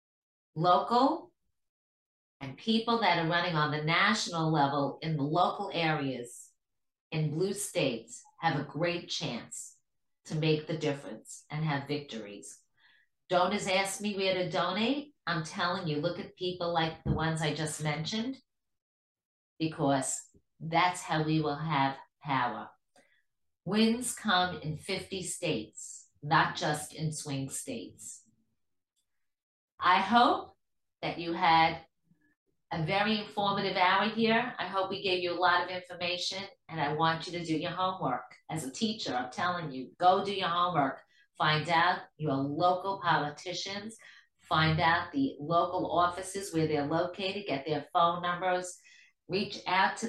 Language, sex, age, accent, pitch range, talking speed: English, female, 40-59, American, 155-195 Hz, 145 wpm